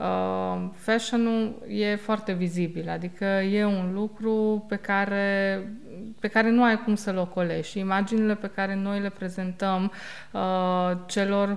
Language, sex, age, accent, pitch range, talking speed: Romanian, female, 20-39, native, 180-200 Hz, 130 wpm